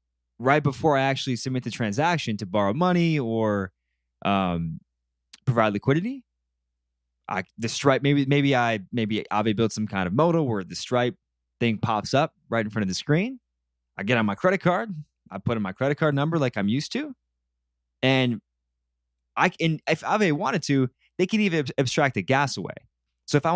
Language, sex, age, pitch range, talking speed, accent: English, male, 20-39, 90-135 Hz, 190 wpm, American